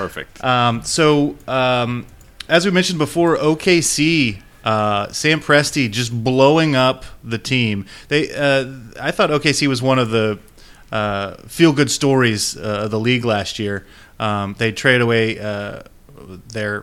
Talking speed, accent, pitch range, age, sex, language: 145 wpm, American, 105-135 Hz, 30-49, male, English